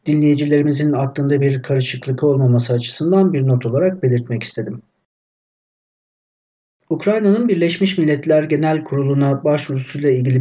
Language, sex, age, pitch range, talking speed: Turkish, male, 60-79, 125-155 Hz, 105 wpm